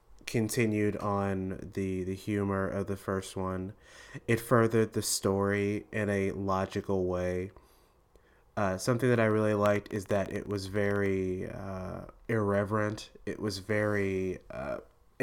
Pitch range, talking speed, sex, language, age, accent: 95-105 Hz, 135 wpm, male, English, 20-39, American